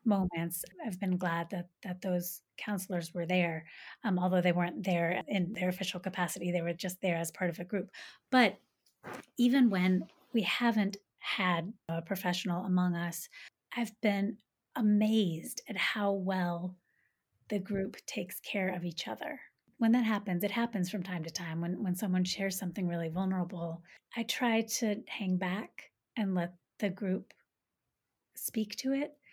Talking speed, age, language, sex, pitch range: 160 wpm, 30-49, English, female, 175-210 Hz